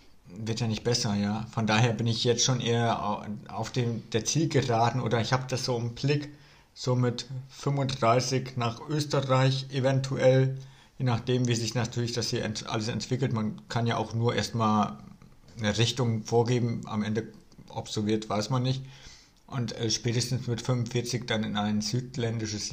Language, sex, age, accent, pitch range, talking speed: German, male, 50-69, German, 110-125 Hz, 170 wpm